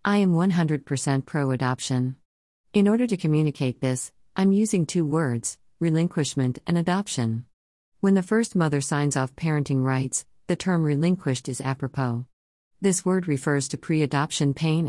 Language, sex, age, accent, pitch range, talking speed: English, female, 50-69, American, 130-175 Hz, 140 wpm